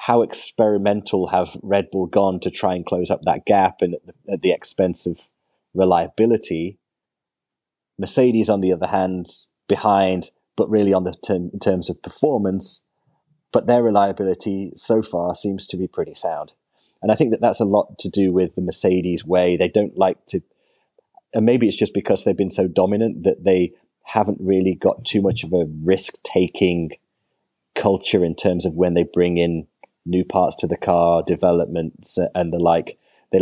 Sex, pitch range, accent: male, 90-100 Hz, British